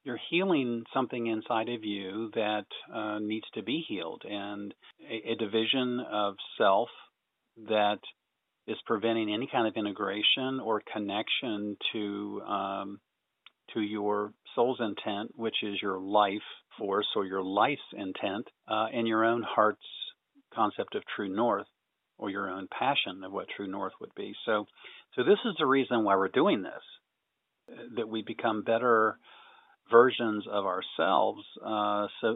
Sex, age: male, 50-69